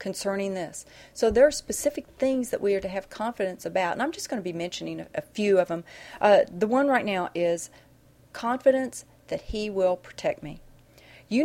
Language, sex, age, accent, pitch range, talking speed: English, female, 40-59, American, 170-230 Hz, 205 wpm